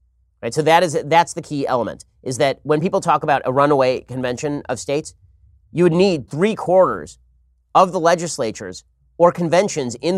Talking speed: 175 wpm